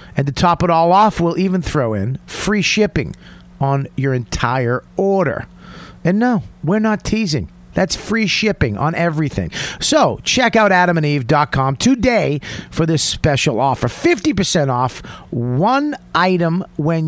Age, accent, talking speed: 40-59, American, 140 wpm